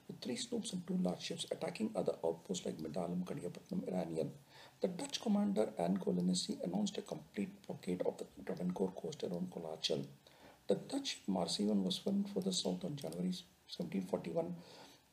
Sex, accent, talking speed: male, Indian, 160 wpm